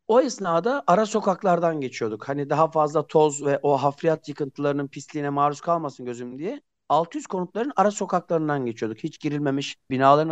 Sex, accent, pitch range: male, native, 135-185 Hz